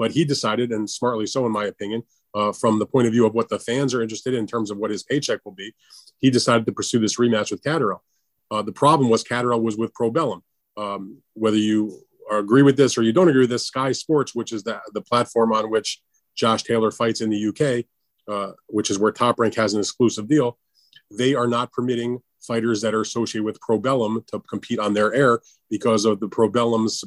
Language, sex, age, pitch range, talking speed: English, male, 30-49, 105-120 Hz, 225 wpm